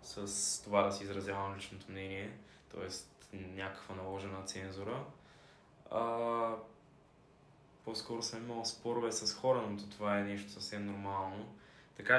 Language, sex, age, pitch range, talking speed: Bulgarian, male, 20-39, 100-115 Hz, 125 wpm